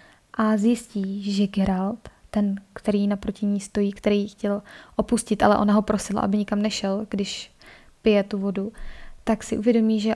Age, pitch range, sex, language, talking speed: 20-39, 205-220 Hz, female, Czech, 160 wpm